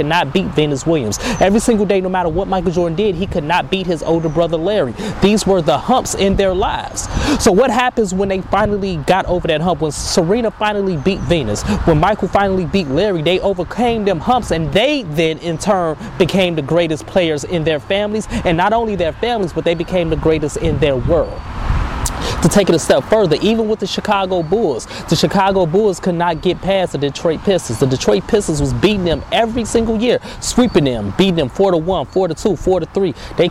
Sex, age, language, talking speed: male, 20-39, English, 215 wpm